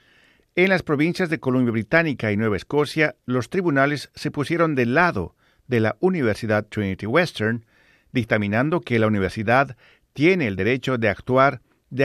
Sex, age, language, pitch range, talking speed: male, 50-69, Spanish, 110-150 Hz, 150 wpm